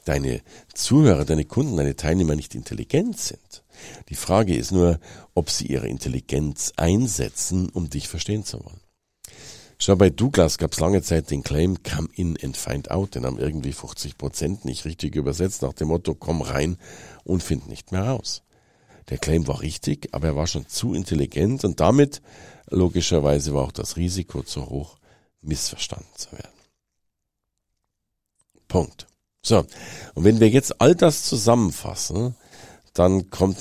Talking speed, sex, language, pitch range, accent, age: 155 wpm, male, German, 75-100 Hz, German, 50-69